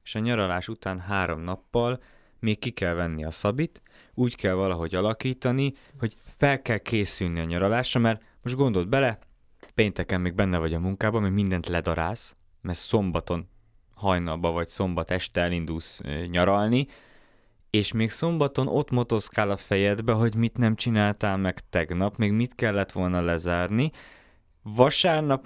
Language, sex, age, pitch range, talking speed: Hungarian, male, 20-39, 95-130 Hz, 145 wpm